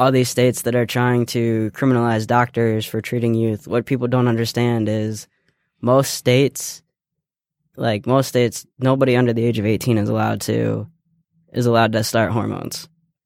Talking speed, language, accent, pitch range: 165 wpm, English, American, 110-130 Hz